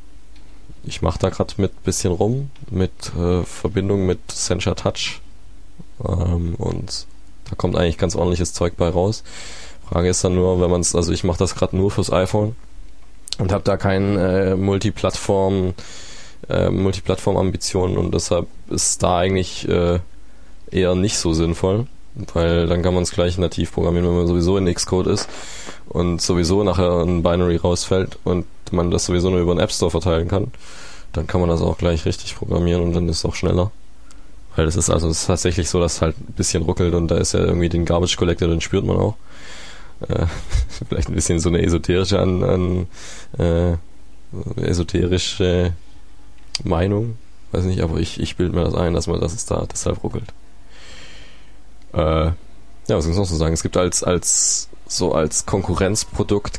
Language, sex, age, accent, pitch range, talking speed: German, male, 20-39, German, 85-95 Hz, 180 wpm